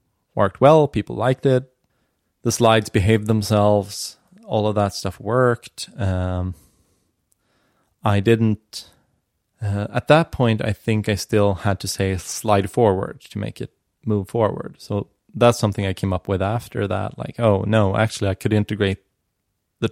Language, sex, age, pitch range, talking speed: English, male, 20-39, 95-115 Hz, 155 wpm